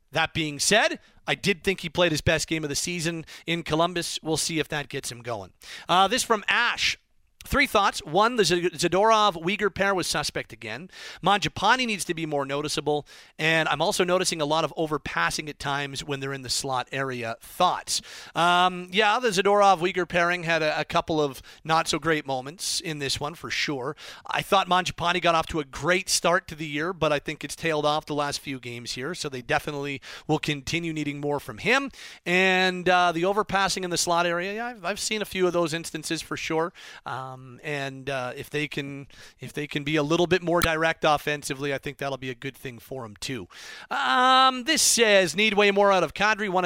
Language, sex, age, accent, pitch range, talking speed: English, male, 40-59, American, 145-180 Hz, 215 wpm